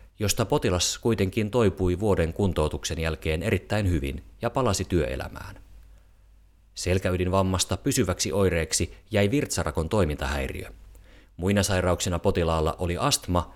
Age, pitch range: 30-49, 85-100 Hz